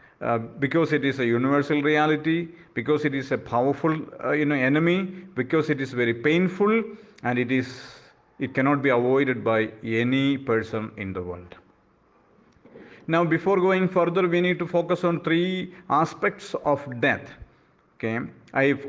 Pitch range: 120-175 Hz